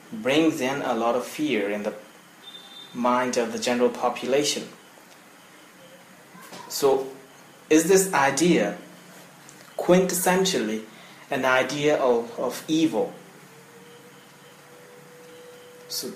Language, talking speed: English, 90 wpm